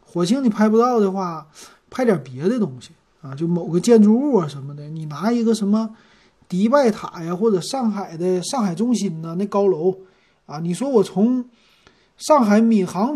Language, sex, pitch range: Chinese, male, 150-215 Hz